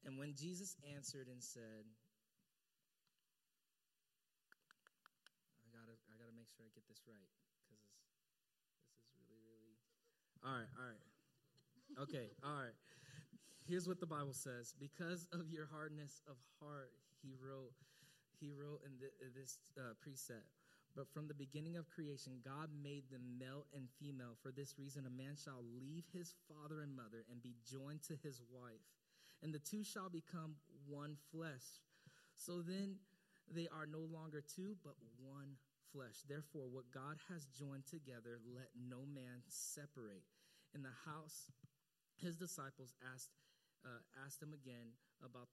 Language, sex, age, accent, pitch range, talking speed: English, male, 20-39, American, 130-155 Hz, 155 wpm